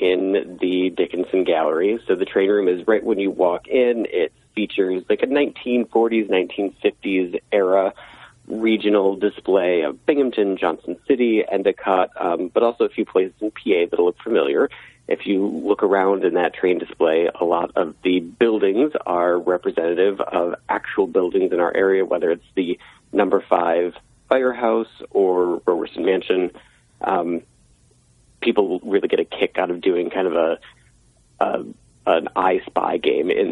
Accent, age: American, 40-59